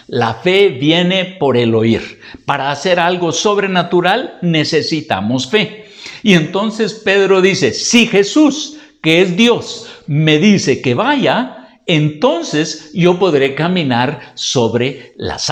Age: 60-79